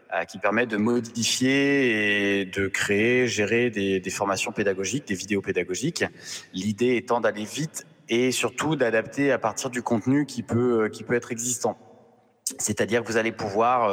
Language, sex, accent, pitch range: French, male, French, 95-120 Hz